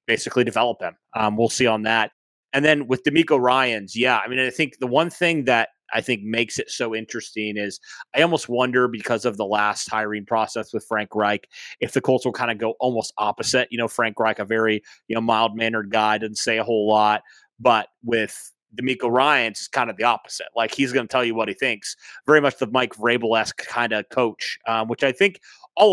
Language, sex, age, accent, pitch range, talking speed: English, male, 30-49, American, 110-130 Hz, 225 wpm